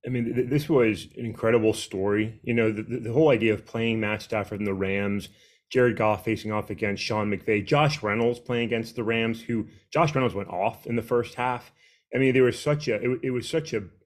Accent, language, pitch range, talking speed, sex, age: American, English, 105-125 Hz, 230 wpm, male, 30-49